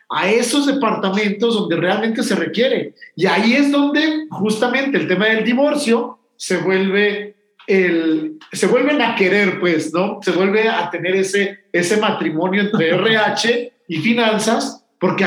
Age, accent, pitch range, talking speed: 50-69, Mexican, 180-230 Hz, 145 wpm